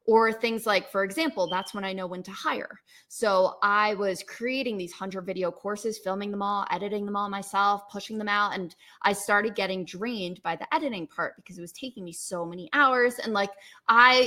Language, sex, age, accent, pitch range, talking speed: English, female, 20-39, American, 190-250 Hz, 210 wpm